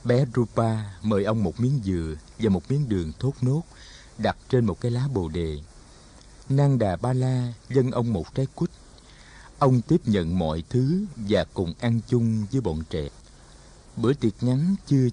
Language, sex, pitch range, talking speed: Vietnamese, male, 115-165 Hz, 180 wpm